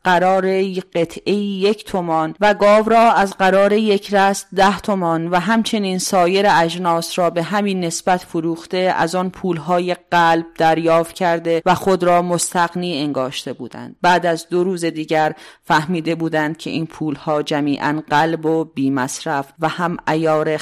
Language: English